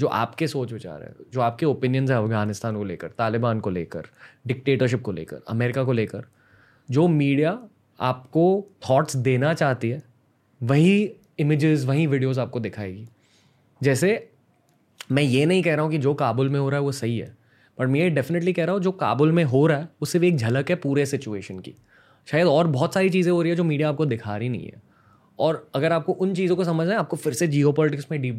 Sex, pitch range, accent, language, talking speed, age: male, 120-155 Hz, native, Hindi, 210 wpm, 20-39